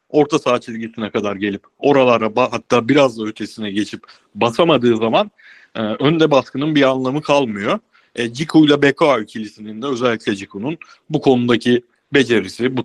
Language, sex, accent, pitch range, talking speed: Turkish, male, native, 110-155 Hz, 145 wpm